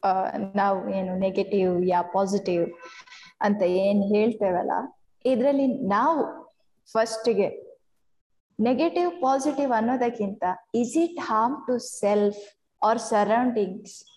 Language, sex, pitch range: Kannada, female, 205-280 Hz